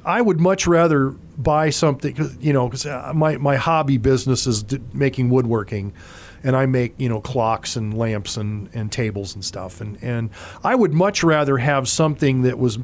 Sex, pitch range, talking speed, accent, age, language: male, 105-140 Hz, 180 wpm, American, 40-59, English